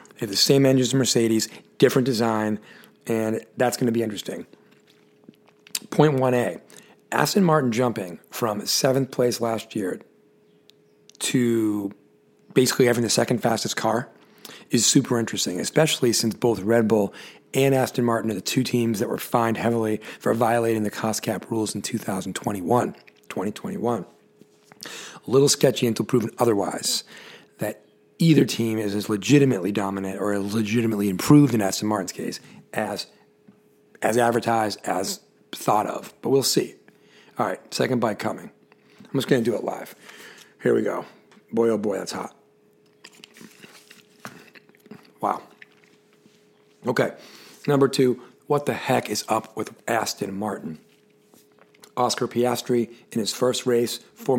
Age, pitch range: 40-59, 110-130 Hz